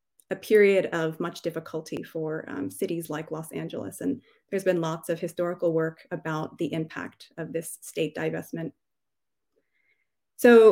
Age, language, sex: 30-49, English, female